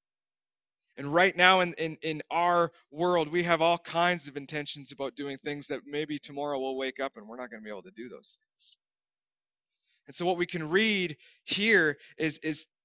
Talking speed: 200 wpm